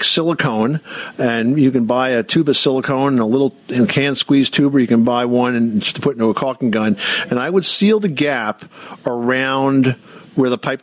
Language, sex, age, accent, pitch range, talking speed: English, male, 50-69, American, 115-145 Hz, 215 wpm